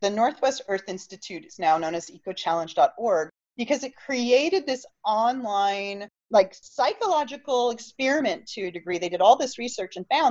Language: English